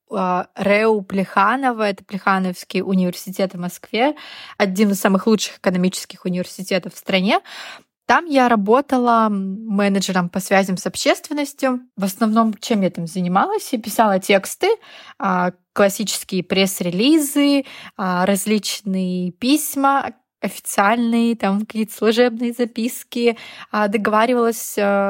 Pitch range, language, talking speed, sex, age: 190-230 Hz, Russian, 100 wpm, female, 20-39